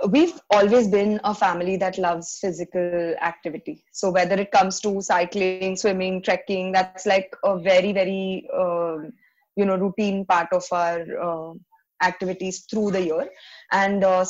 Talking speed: 150 wpm